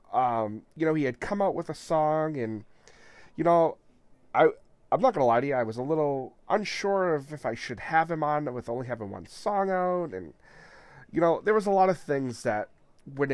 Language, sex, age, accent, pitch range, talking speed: English, male, 30-49, American, 110-150 Hz, 230 wpm